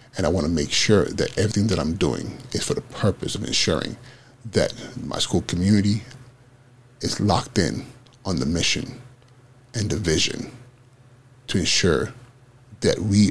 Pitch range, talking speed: 100-125 Hz, 150 wpm